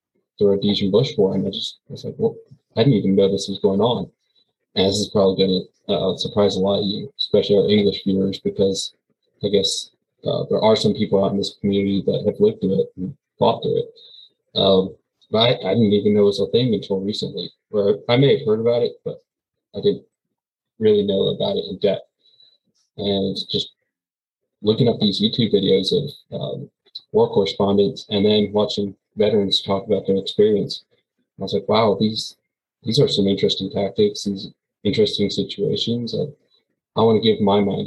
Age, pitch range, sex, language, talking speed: 20-39, 100-140 Hz, male, English, 195 wpm